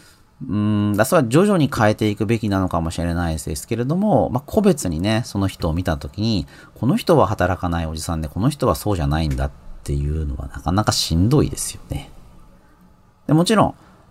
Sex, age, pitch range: male, 40-59, 80-130 Hz